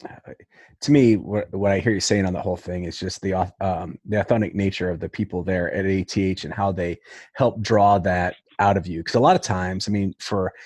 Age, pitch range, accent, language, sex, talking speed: 30-49, 95-105 Hz, American, English, male, 240 wpm